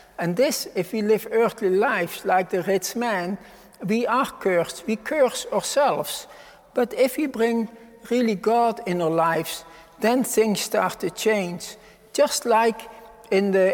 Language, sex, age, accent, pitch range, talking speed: English, male, 60-79, Dutch, 180-230 Hz, 155 wpm